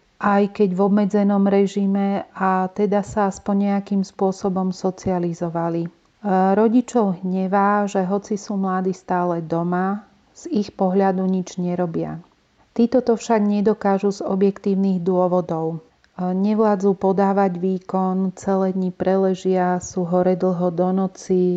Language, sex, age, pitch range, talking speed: Slovak, female, 40-59, 185-200 Hz, 120 wpm